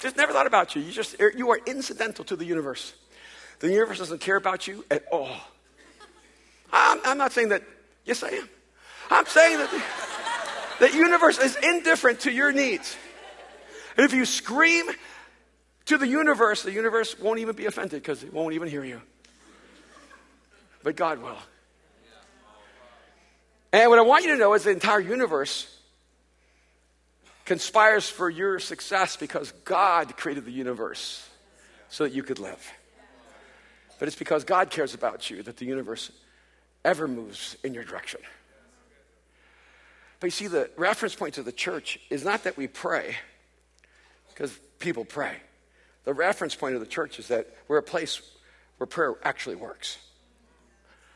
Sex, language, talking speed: male, English, 155 wpm